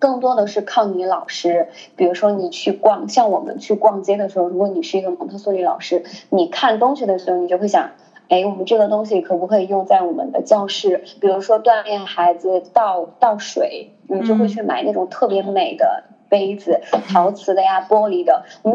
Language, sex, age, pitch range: Chinese, female, 20-39, 195-275 Hz